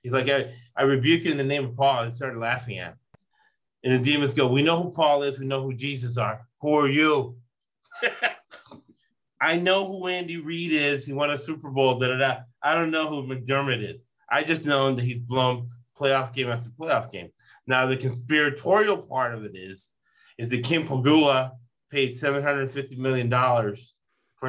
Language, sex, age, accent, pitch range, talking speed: English, male, 30-49, American, 125-145 Hz, 195 wpm